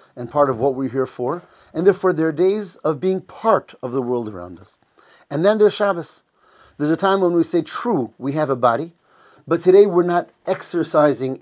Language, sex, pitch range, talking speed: English, male, 150-185 Hz, 210 wpm